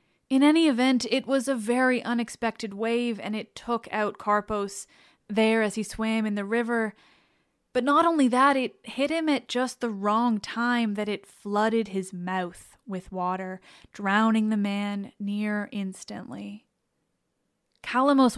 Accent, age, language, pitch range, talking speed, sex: American, 10-29, English, 205-255 Hz, 150 wpm, female